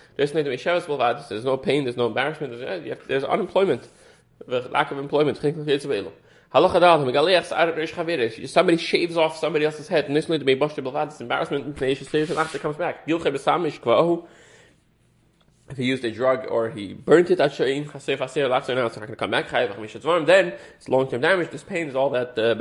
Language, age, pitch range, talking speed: English, 20-39, 130-170 Hz, 130 wpm